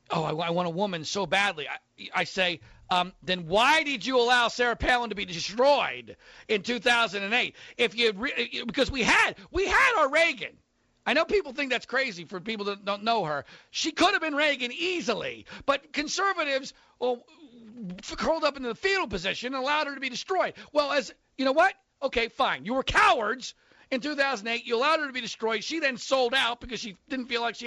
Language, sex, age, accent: English, male, 40-59, American